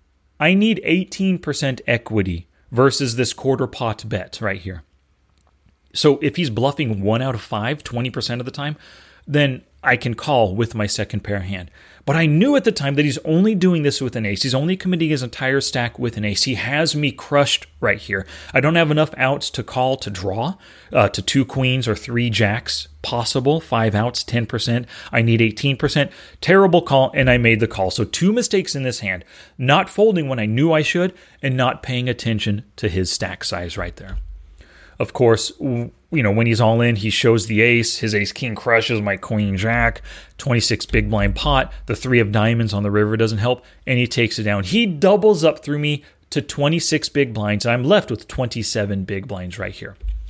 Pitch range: 105-145 Hz